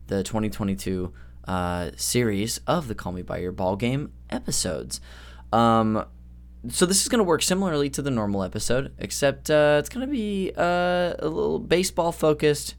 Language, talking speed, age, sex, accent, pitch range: English, 165 wpm, 10-29, male, American, 90-150 Hz